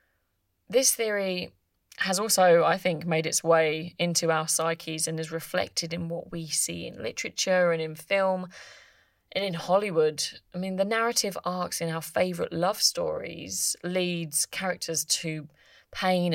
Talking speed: 150 wpm